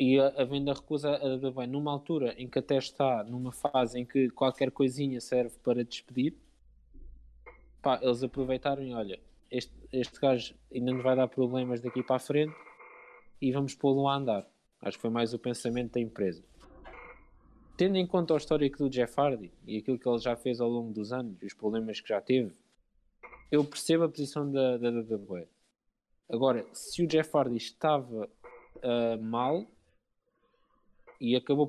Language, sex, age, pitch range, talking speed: Portuguese, male, 20-39, 115-145 Hz, 180 wpm